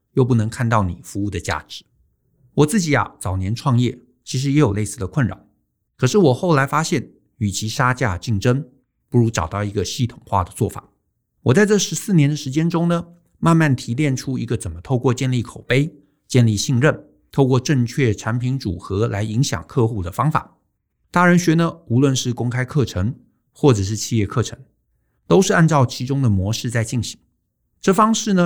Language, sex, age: Chinese, male, 50-69